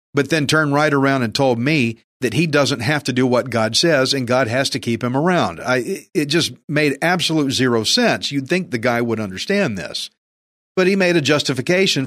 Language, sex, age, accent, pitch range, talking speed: English, male, 50-69, American, 115-150 Hz, 215 wpm